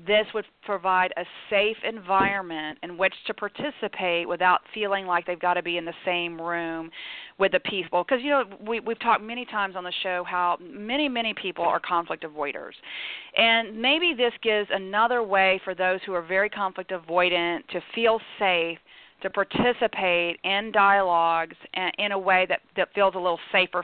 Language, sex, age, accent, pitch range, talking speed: English, female, 40-59, American, 170-205 Hz, 180 wpm